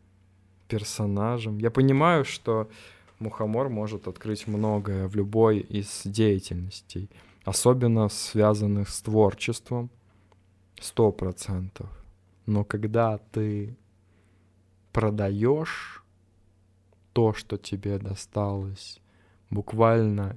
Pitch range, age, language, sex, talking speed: 95-115 Hz, 20-39, Russian, male, 75 wpm